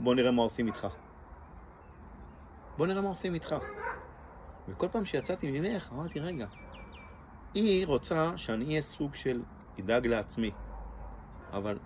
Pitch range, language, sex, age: 90-140 Hz, Hebrew, male, 40-59